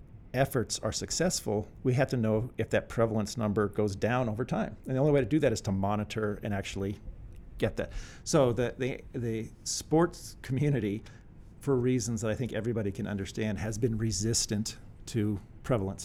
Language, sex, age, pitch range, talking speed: English, male, 50-69, 100-115 Hz, 180 wpm